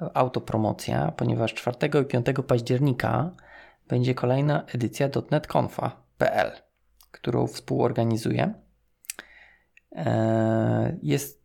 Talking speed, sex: 65 wpm, male